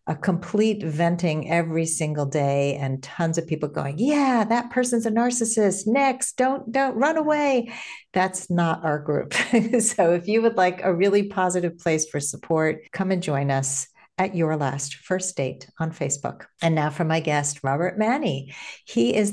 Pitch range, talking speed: 150-205 Hz, 175 wpm